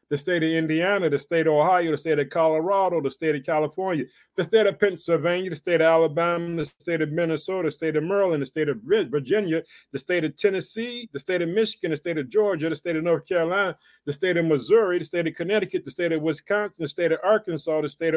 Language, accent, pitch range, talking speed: English, American, 160-190 Hz, 235 wpm